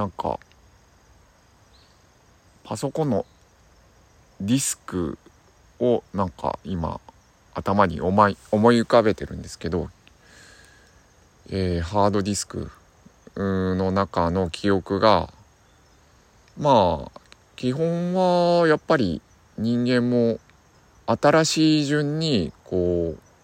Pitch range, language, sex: 85-120 Hz, Japanese, male